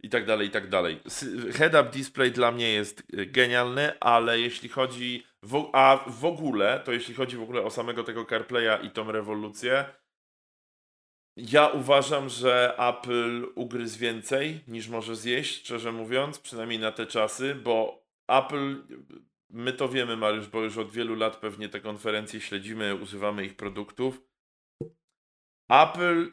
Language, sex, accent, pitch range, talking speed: Polish, male, native, 115-130 Hz, 150 wpm